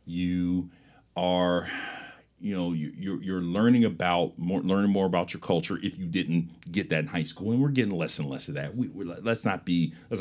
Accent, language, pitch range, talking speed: American, English, 85-115 Hz, 210 wpm